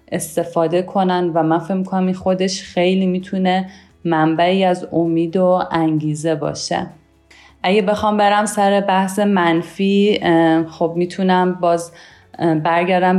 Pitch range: 165-190 Hz